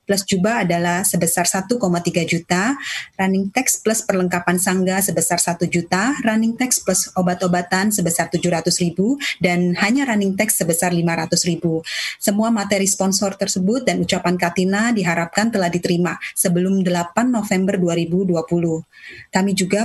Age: 30-49